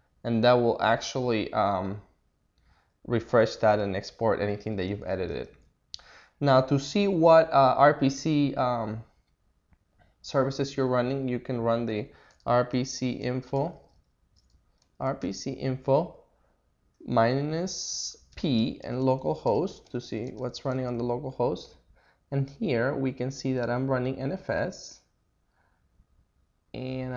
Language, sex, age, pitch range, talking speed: English, male, 20-39, 105-135 Hz, 115 wpm